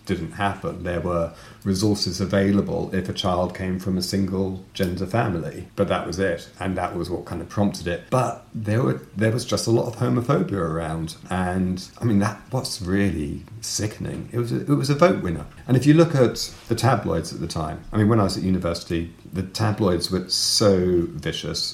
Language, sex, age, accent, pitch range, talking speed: English, male, 40-59, British, 90-110 Hz, 205 wpm